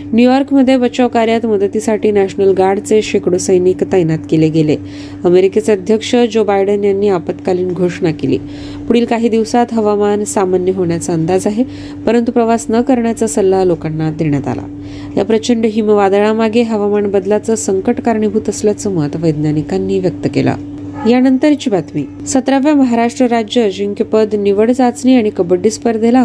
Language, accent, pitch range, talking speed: Marathi, native, 180-245 Hz, 135 wpm